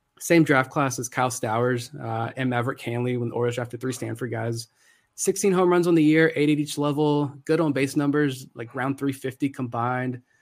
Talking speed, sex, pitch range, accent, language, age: 200 wpm, male, 120-145 Hz, American, English, 20-39